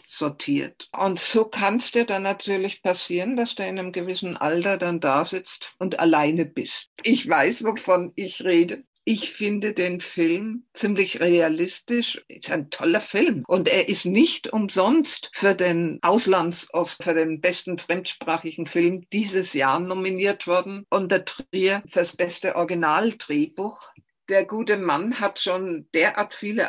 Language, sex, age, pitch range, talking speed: German, female, 50-69, 170-210 Hz, 150 wpm